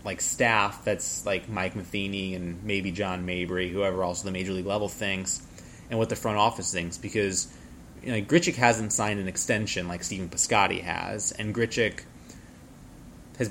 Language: English